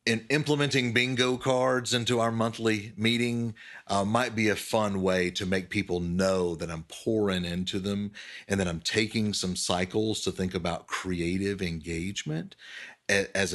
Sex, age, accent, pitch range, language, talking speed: male, 40-59, American, 90-115 Hz, English, 150 wpm